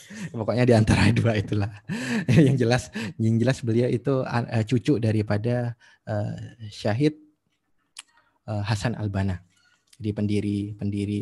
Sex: male